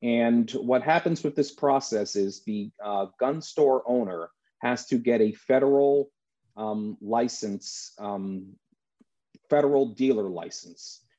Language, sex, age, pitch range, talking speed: English, male, 40-59, 100-125 Hz, 125 wpm